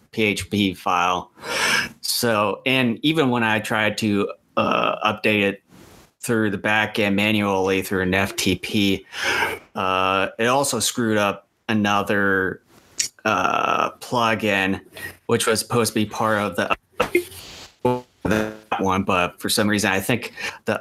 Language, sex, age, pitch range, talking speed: English, male, 30-49, 100-115 Hz, 130 wpm